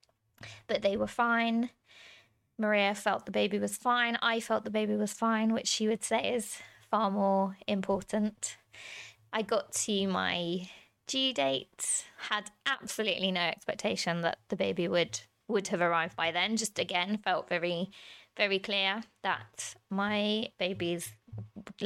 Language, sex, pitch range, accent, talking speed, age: English, female, 175-215 Hz, British, 145 wpm, 20-39